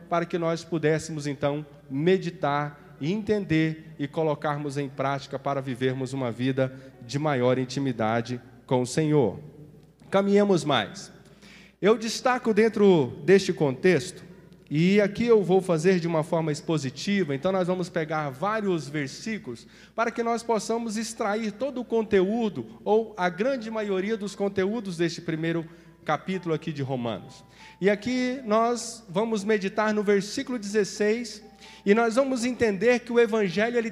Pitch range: 155-225 Hz